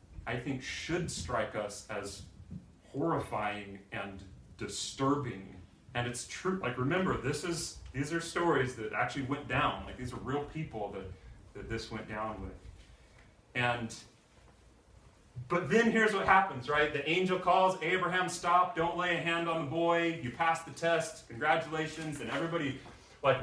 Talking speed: 155 wpm